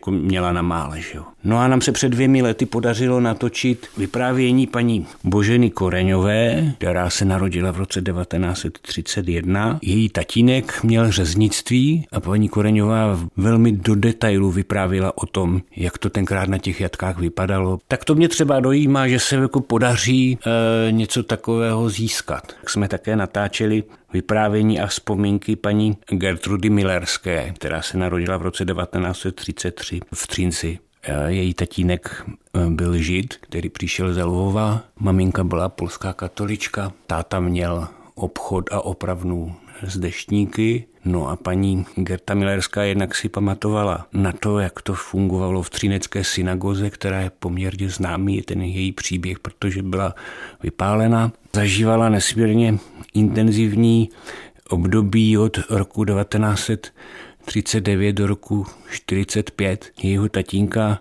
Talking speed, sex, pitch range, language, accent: 130 wpm, male, 90-110 Hz, Czech, native